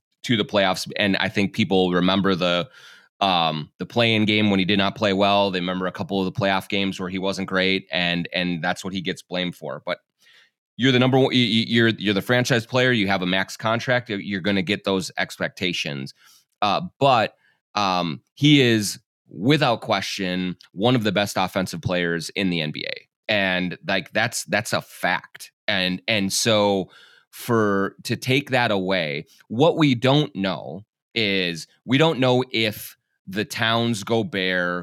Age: 30-49